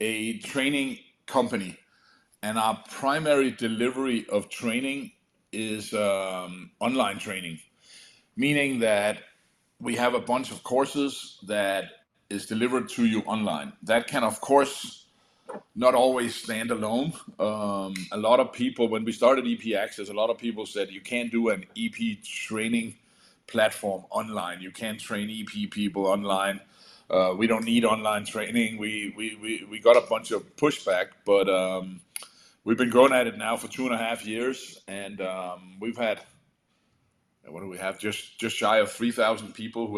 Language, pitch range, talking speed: English, 100-125 Hz, 165 wpm